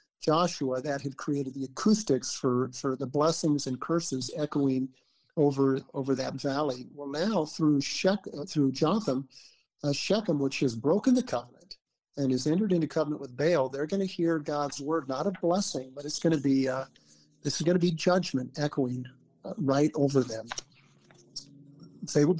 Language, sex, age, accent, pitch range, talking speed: English, male, 50-69, American, 135-165 Hz, 175 wpm